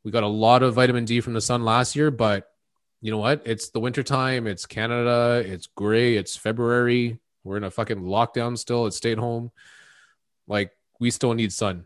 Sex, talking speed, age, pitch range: male, 200 wpm, 20-39, 105-130 Hz